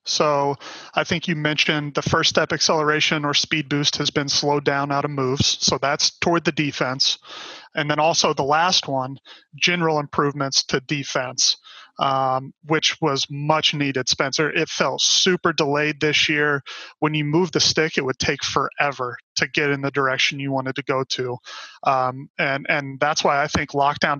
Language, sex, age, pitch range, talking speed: English, male, 30-49, 140-165 Hz, 180 wpm